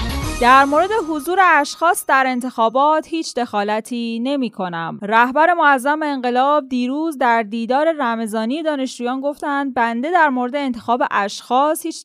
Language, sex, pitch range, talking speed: Persian, female, 205-285 Hz, 125 wpm